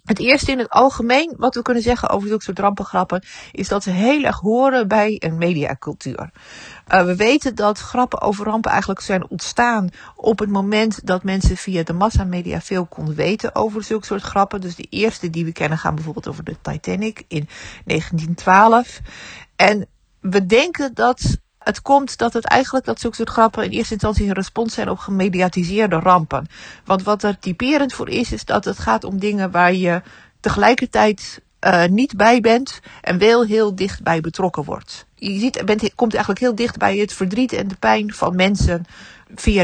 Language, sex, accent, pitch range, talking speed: Dutch, female, Dutch, 175-220 Hz, 185 wpm